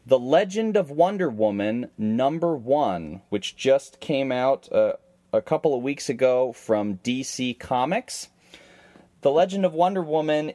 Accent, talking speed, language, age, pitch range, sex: American, 140 wpm, English, 30-49, 100-135 Hz, male